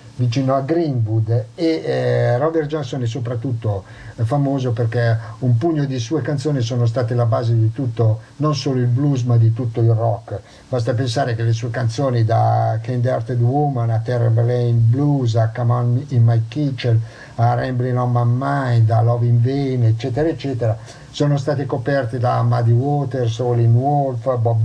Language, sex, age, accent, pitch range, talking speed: Italian, male, 50-69, native, 115-140 Hz, 175 wpm